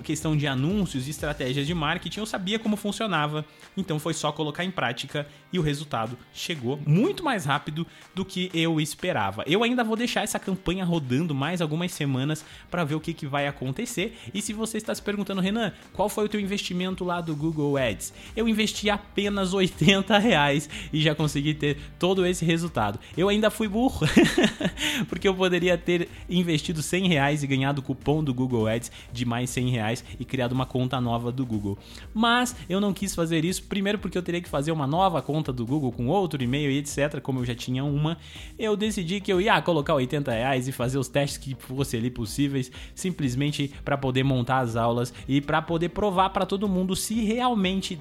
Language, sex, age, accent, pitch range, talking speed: Portuguese, male, 20-39, Brazilian, 140-195 Hz, 200 wpm